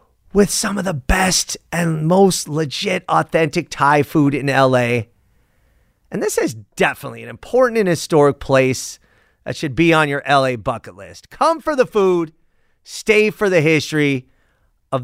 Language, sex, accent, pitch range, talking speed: English, male, American, 120-175 Hz, 155 wpm